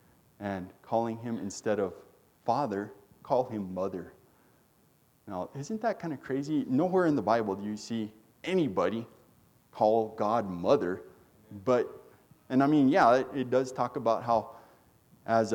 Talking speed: 145 wpm